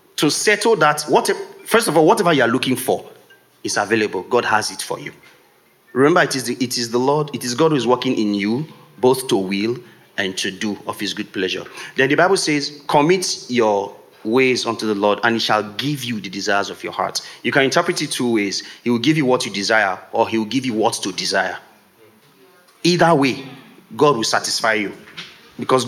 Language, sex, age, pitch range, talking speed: English, male, 30-49, 115-160 Hz, 210 wpm